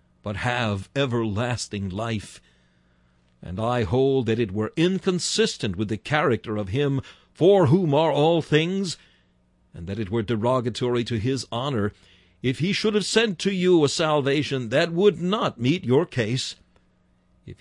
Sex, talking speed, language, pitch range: male, 155 wpm, English, 95-150 Hz